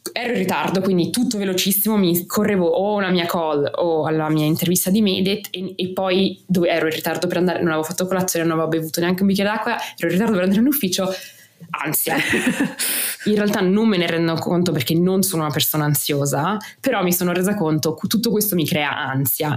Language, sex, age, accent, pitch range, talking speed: Italian, female, 20-39, native, 155-190 Hz, 215 wpm